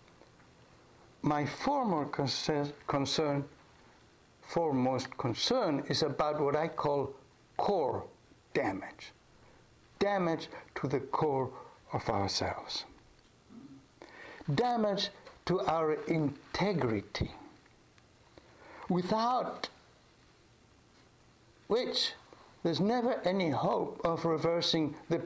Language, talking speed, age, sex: English, 75 wpm, 60-79, male